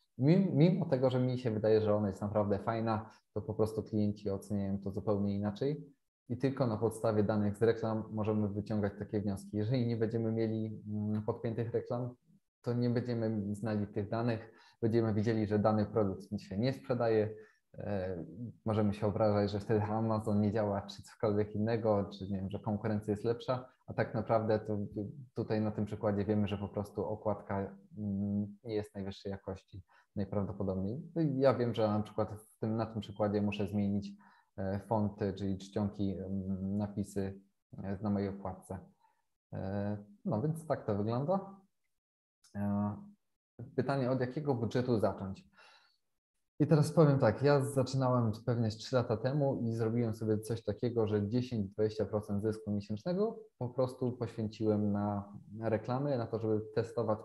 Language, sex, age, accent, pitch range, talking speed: Polish, male, 20-39, native, 105-120 Hz, 150 wpm